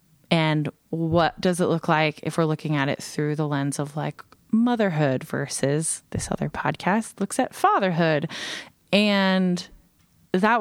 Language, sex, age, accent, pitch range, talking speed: English, female, 20-39, American, 155-195 Hz, 145 wpm